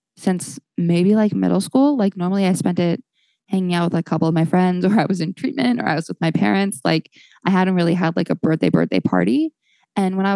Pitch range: 170-215 Hz